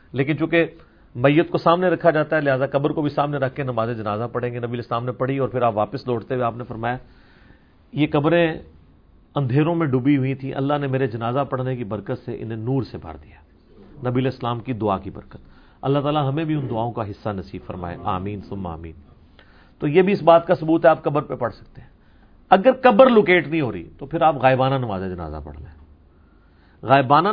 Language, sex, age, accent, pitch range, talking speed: English, male, 40-59, Indian, 115-165 Hz, 145 wpm